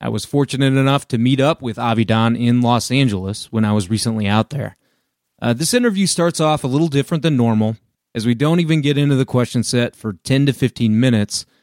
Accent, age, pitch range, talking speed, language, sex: American, 30-49, 110-140 Hz, 215 wpm, English, male